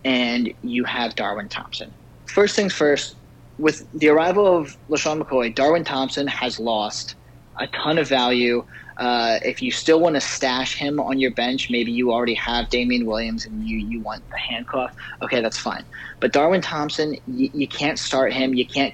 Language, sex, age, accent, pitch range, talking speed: English, male, 30-49, American, 120-150 Hz, 185 wpm